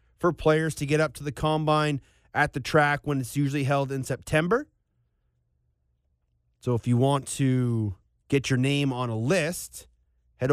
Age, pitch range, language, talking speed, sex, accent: 30-49, 105-145 Hz, English, 165 wpm, male, American